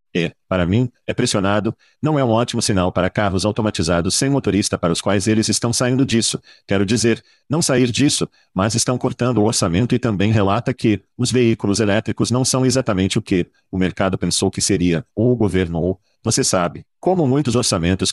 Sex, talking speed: male, 195 wpm